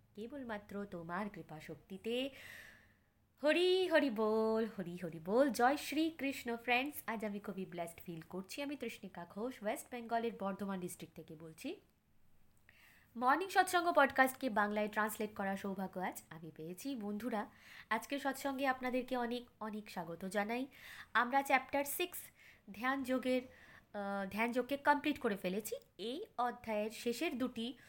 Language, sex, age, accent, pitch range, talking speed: Bengali, female, 20-39, native, 205-285 Hz, 130 wpm